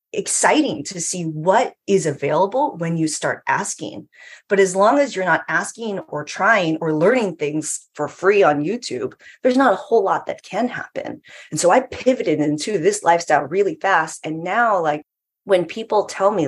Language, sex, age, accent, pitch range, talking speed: English, female, 30-49, American, 160-245 Hz, 180 wpm